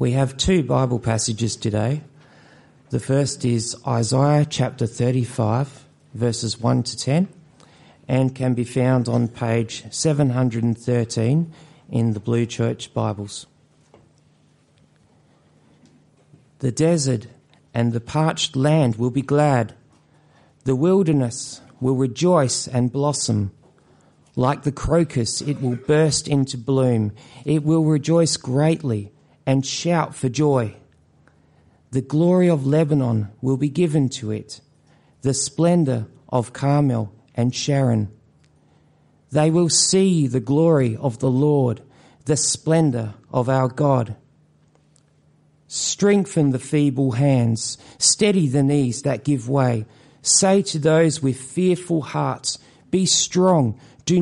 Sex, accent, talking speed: male, Australian, 115 wpm